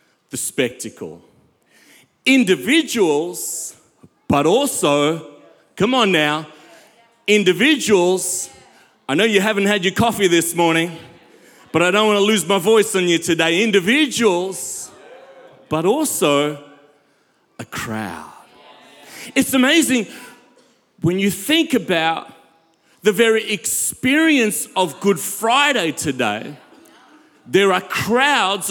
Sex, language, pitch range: male, English, 155-235 Hz